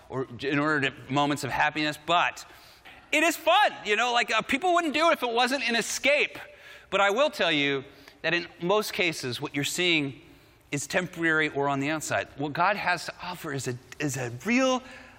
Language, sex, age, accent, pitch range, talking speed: Dutch, male, 30-49, American, 135-200 Hz, 205 wpm